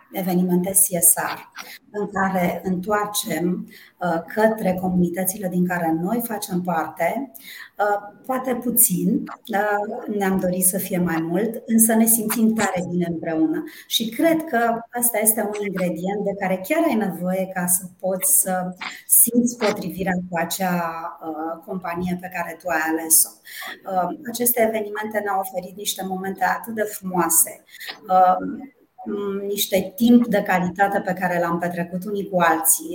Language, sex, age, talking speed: Romanian, female, 30-49, 140 wpm